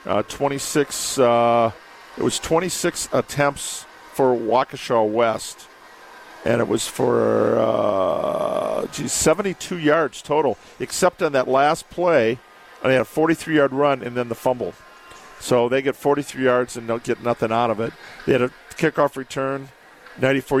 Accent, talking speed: American, 150 wpm